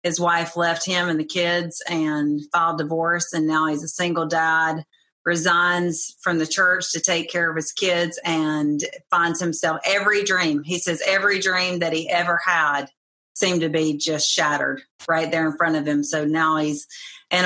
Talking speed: 185 wpm